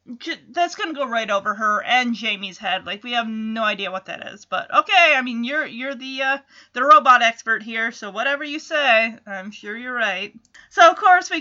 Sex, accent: female, American